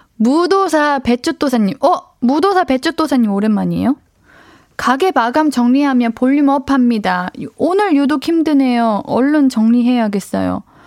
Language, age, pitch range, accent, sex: Korean, 20-39, 210-275 Hz, native, female